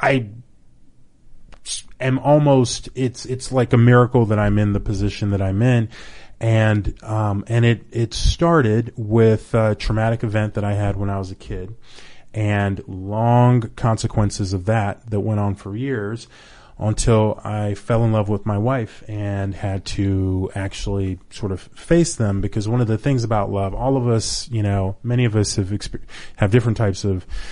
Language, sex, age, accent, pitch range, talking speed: English, male, 30-49, American, 100-120 Hz, 175 wpm